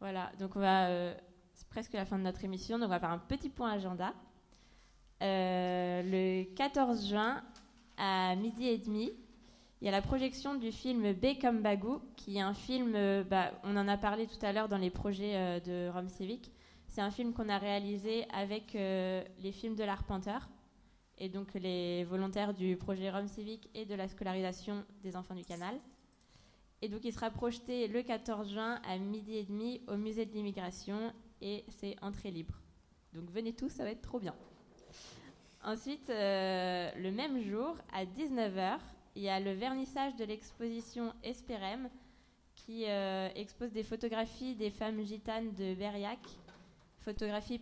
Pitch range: 190-230 Hz